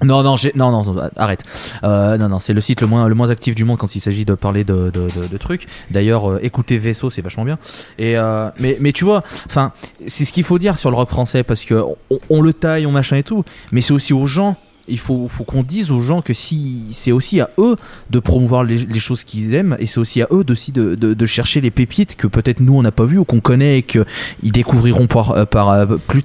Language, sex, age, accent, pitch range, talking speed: French, male, 20-39, French, 115-145 Hz, 265 wpm